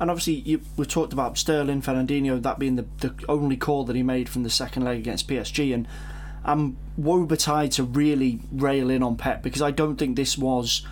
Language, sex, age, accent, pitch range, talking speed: English, male, 20-39, British, 125-145 Hz, 205 wpm